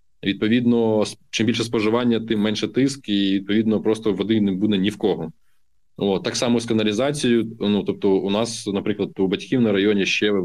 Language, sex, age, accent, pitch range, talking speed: Ukrainian, male, 20-39, native, 100-115 Hz, 170 wpm